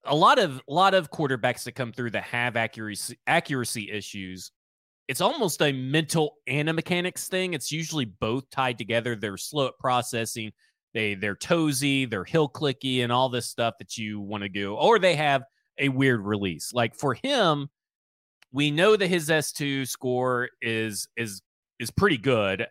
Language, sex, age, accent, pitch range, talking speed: English, male, 30-49, American, 110-155 Hz, 180 wpm